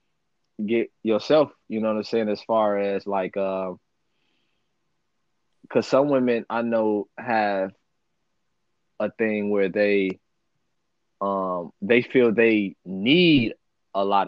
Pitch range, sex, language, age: 95-115 Hz, male, English, 20-39